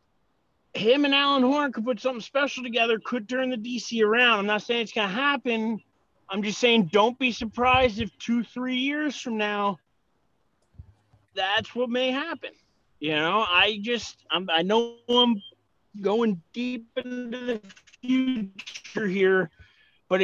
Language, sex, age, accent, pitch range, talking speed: English, male, 30-49, American, 175-235 Hz, 150 wpm